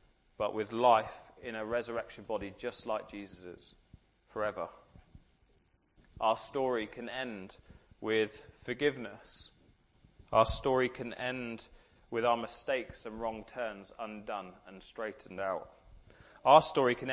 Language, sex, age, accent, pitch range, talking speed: English, male, 30-49, British, 95-130 Hz, 120 wpm